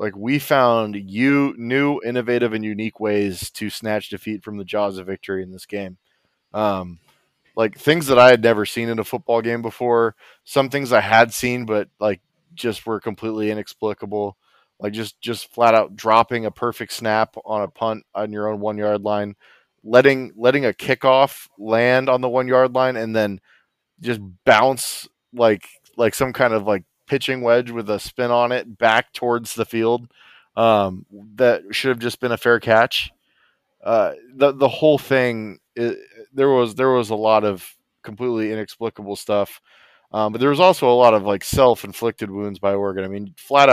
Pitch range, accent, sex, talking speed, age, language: 105-125 Hz, American, male, 180 wpm, 20-39, English